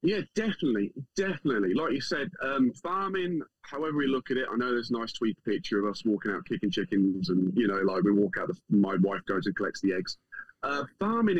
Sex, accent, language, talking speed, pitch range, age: male, British, English, 220 wpm, 100-130 Hz, 30-49